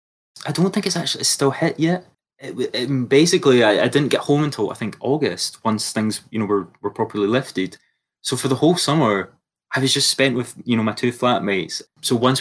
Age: 20-39